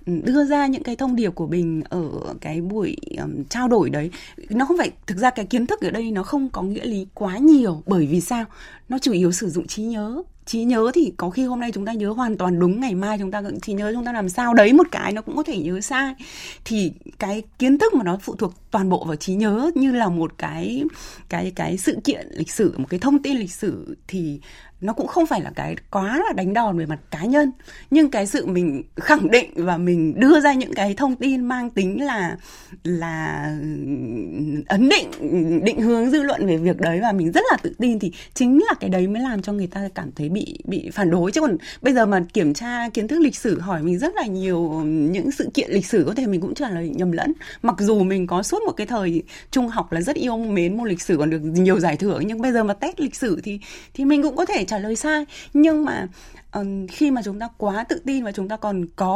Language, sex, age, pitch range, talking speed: Vietnamese, female, 20-39, 180-265 Hz, 255 wpm